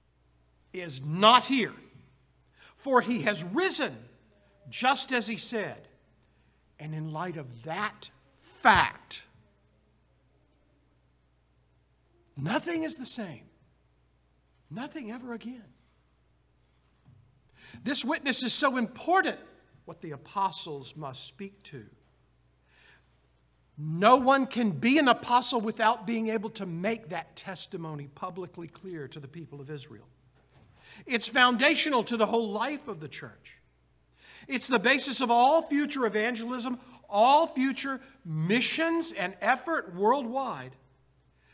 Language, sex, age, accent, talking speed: English, male, 60-79, American, 110 wpm